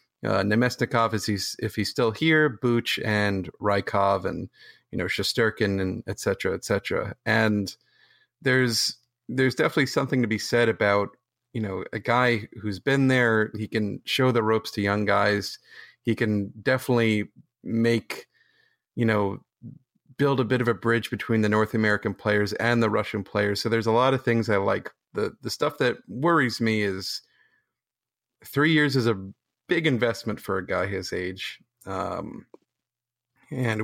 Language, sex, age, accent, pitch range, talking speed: English, male, 30-49, American, 105-125 Hz, 165 wpm